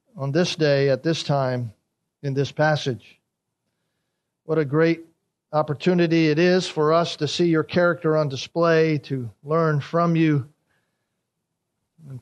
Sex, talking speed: male, 140 wpm